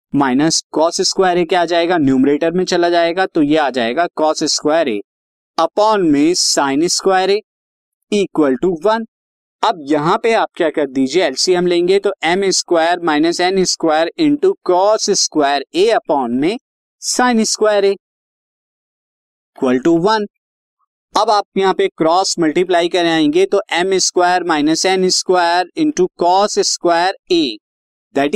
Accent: native